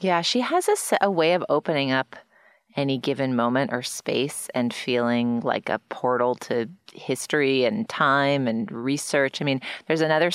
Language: English